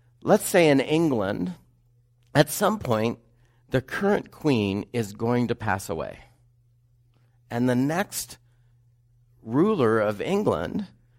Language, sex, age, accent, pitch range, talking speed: English, male, 50-69, American, 115-130 Hz, 115 wpm